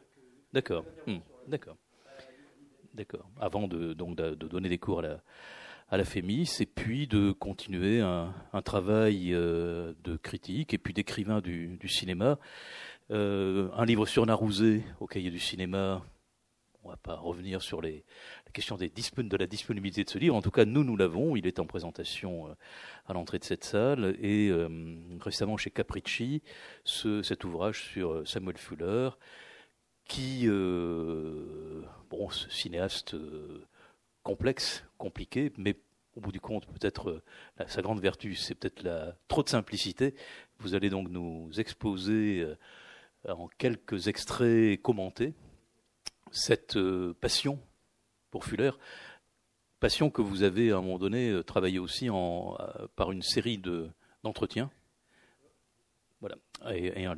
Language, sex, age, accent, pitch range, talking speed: French, male, 40-59, French, 90-110 Hz, 150 wpm